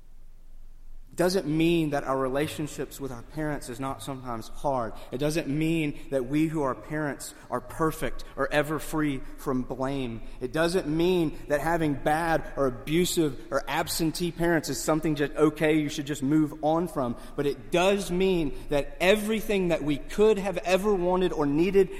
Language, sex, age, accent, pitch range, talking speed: English, male, 30-49, American, 120-160 Hz, 170 wpm